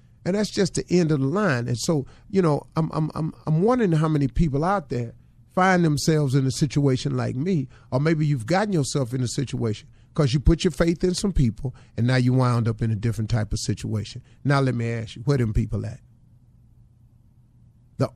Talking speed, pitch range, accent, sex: 220 wpm, 115-140 Hz, American, male